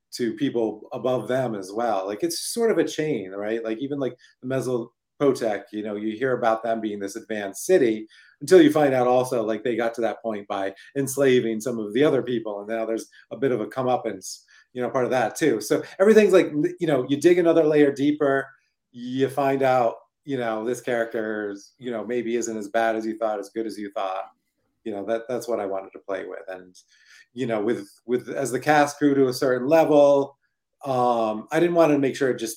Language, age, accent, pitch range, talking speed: English, 30-49, American, 110-140 Hz, 225 wpm